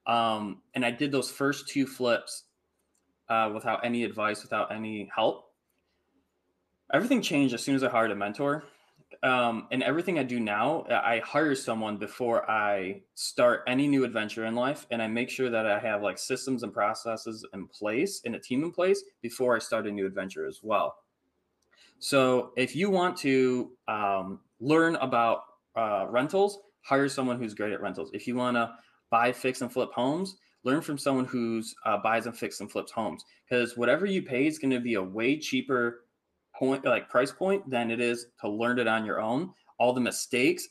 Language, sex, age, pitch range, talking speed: English, male, 20-39, 110-140 Hz, 190 wpm